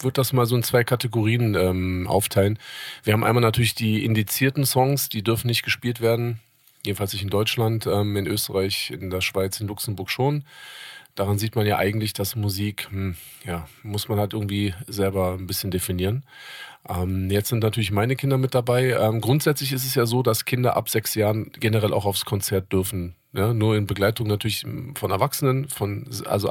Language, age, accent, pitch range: German, 40-59, German, 100-120 Hz